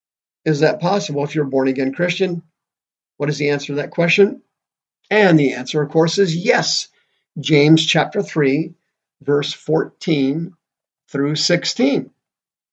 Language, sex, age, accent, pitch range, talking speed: English, male, 50-69, American, 135-170 Hz, 135 wpm